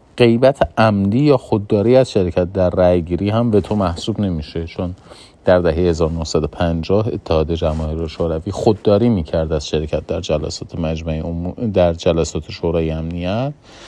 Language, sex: Persian, male